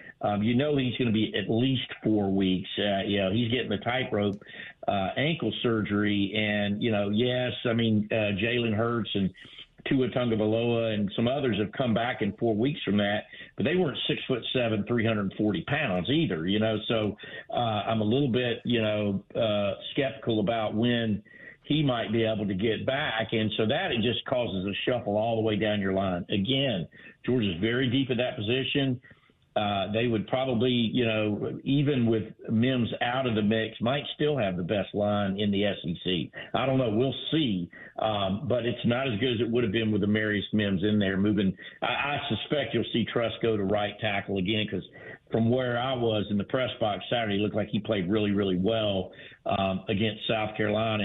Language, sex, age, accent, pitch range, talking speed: English, male, 50-69, American, 105-120 Hz, 210 wpm